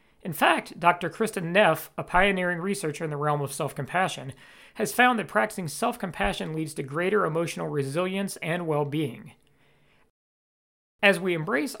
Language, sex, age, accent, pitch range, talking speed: English, male, 40-59, American, 145-180 Hz, 140 wpm